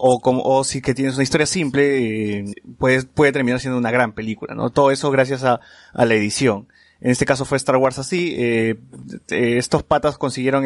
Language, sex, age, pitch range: Spanish, male, 20-39, 120-140 Hz